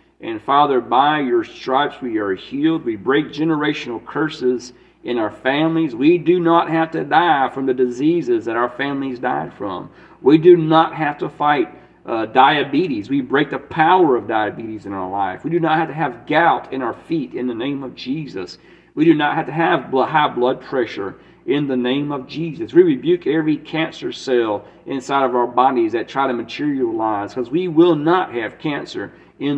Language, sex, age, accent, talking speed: English, male, 40-59, American, 195 wpm